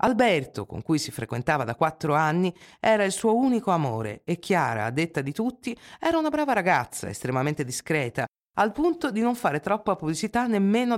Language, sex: Italian, female